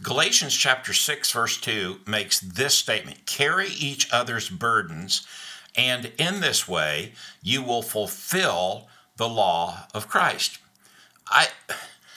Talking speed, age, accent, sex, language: 120 wpm, 60-79, American, male, English